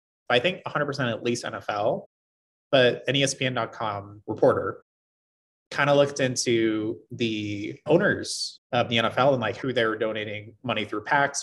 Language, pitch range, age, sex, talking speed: English, 105-140 Hz, 30-49, male, 145 wpm